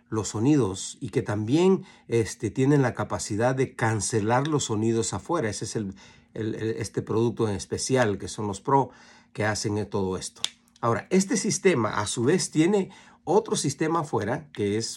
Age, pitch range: 50-69, 105-145 Hz